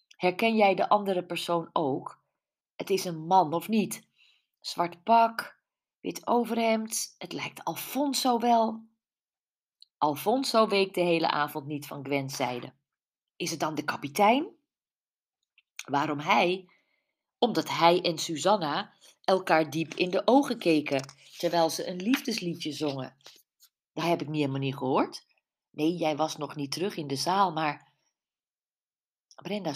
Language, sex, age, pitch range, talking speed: Dutch, female, 40-59, 150-220 Hz, 140 wpm